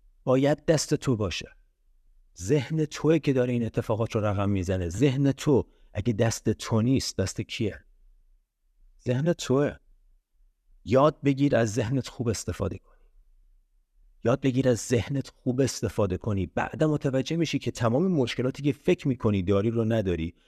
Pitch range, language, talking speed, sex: 95-140 Hz, Persian, 145 wpm, male